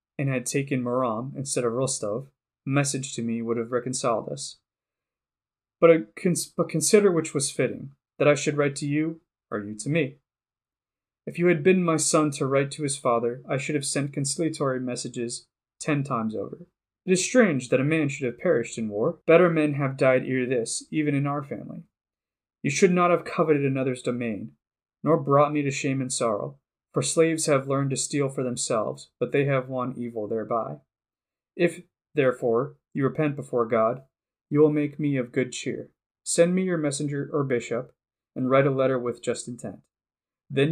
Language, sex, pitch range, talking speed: English, male, 125-155 Hz, 190 wpm